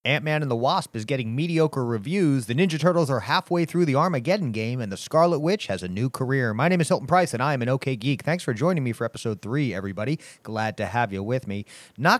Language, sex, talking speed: English, male, 250 wpm